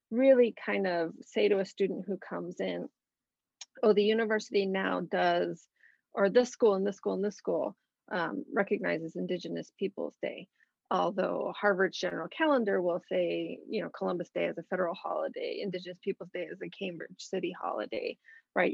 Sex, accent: female, American